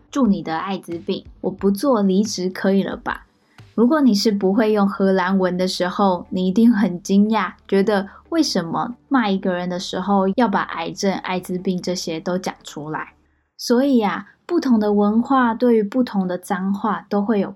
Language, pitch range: Chinese, 185-225 Hz